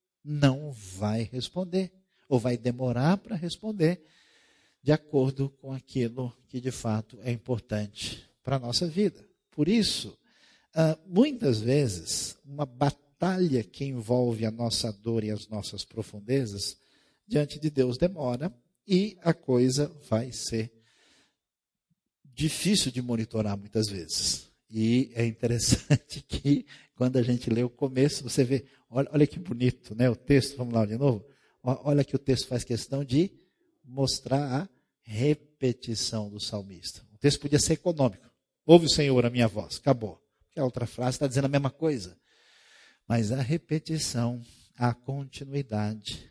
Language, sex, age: Portuguese, male, 50-69